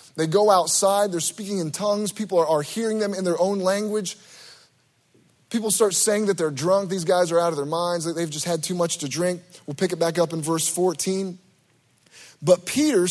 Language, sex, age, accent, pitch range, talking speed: English, male, 30-49, American, 155-210 Hz, 210 wpm